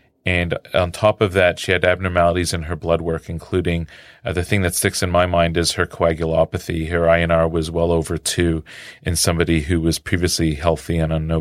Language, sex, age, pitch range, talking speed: English, male, 30-49, 80-90 Hz, 205 wpm